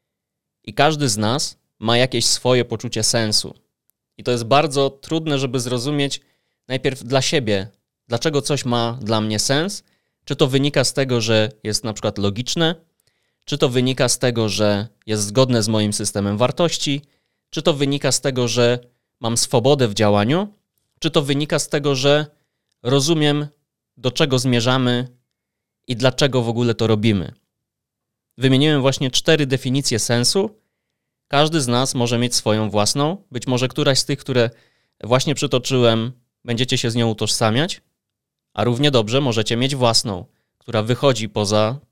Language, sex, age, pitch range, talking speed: Polish, male, 20-39, 110-140 Hz, 155 wpm